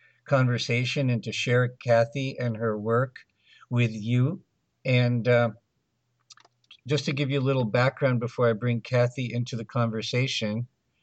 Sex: male